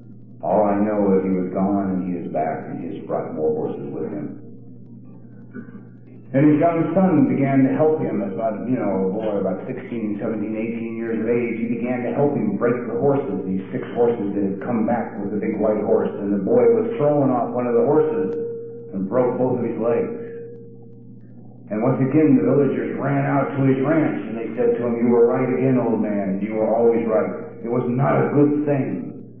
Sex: male